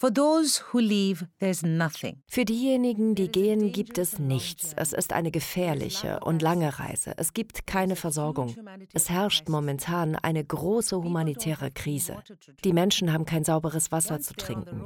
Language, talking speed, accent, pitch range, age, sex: German, 135 wpm, German, 160-205 Hz, 40-59, female